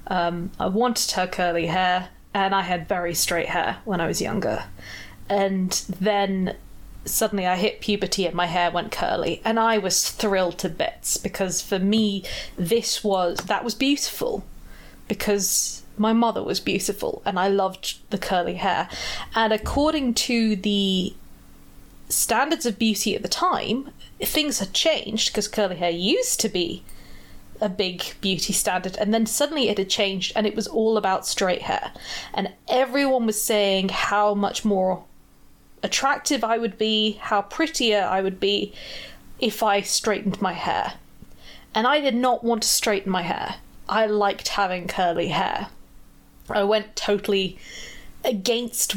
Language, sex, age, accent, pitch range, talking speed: English, female, 20-39, British, 185-225 Hz, 155 wpm